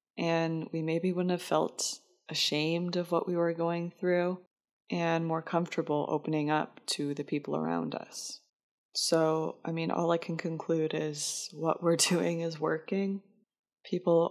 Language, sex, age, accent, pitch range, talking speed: English, female, 20-39, American, 155-180 Hz, 155 wpm